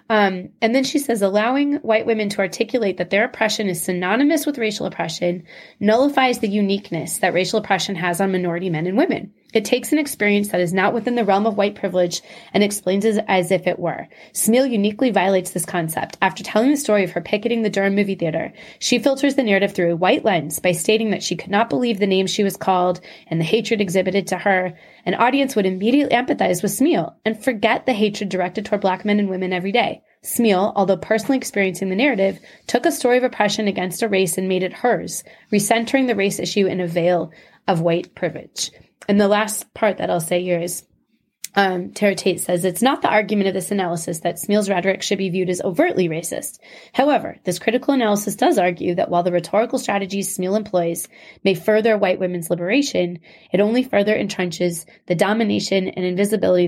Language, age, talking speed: English, 20-39, 205 wpm